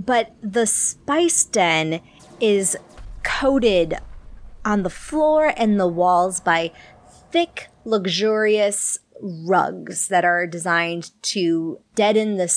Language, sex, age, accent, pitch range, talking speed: English, female, 30-49, American, 175-230 Hz, 105 wpm